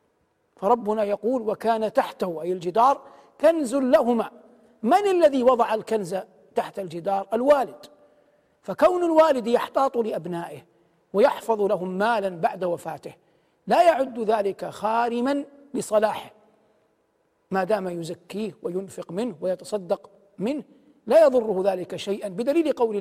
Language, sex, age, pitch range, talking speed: Arabic, male, 50-69, 190-250 Hz, 110 wpm